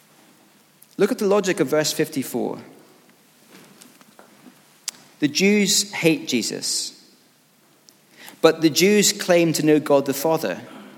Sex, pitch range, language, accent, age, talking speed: male, 145-190 Hz, English, British, 40-59, 110 wpm